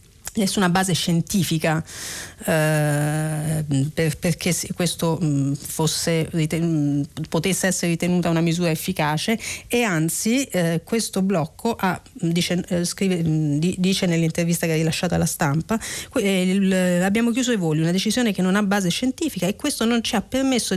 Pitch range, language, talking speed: 160-190 Hz, Italian, 140 wpm